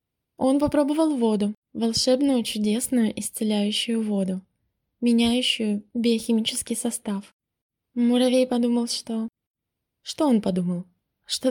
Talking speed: 90 wpm